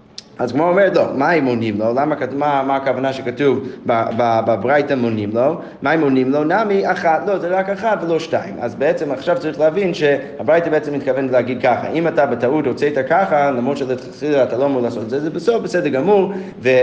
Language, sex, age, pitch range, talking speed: Hebrew, male, 30-49, 130-165 Hz, 220 wpm